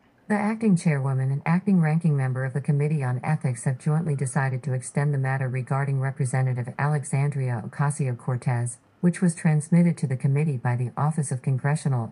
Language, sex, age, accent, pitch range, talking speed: English, female, 50-69, American, 130-155 Hz, 170 wpm